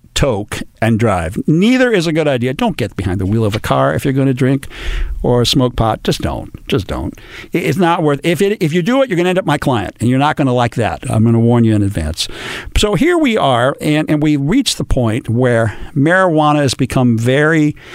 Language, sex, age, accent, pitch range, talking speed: English, male, 50-69, American, 120-185 Hz, 250 wpm